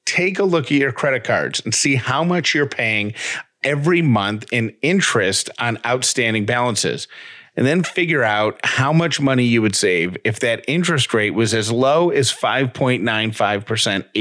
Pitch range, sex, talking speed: 115-150 Hz, male, 165 wpm